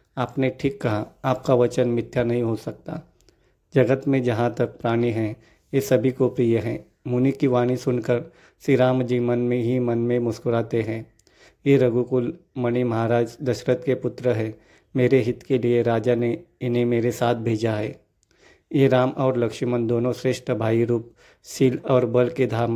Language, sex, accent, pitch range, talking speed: Hindi, male, native, 120-130 Hz, 175 wpm